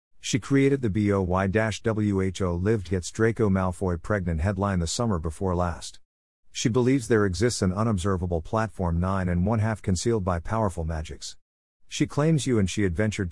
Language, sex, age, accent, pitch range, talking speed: English, male, 50-69, American, 90-115 Hz, 180 wpm